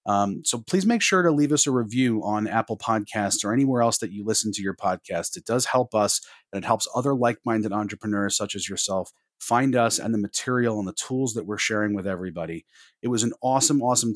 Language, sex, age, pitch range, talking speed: English, male, 30-49, 105-125 Hz, 225 wpm